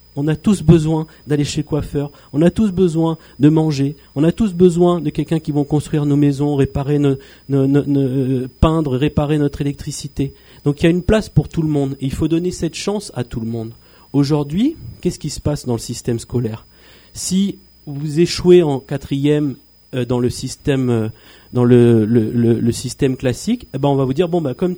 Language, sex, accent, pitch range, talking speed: French, male, French, 135-165 Hz, 220 wpm